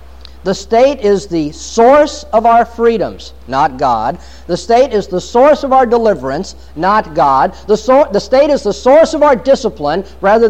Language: English